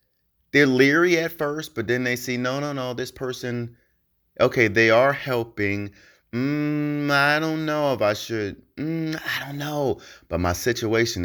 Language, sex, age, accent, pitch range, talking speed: English, male, 30-49, American, 90-140 Hz, 165 wpm